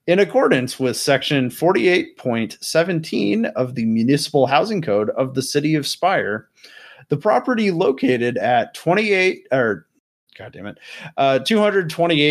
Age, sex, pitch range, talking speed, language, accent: 30-49, male, 130-170 Hz, 145 wpm, English, American